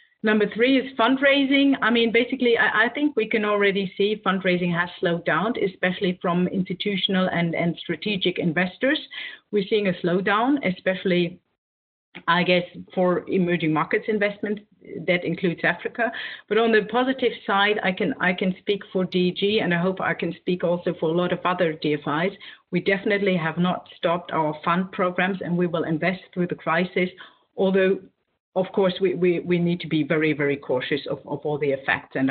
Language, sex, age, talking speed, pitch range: English, female, 40-59, 180 wpm, 175-205 Hz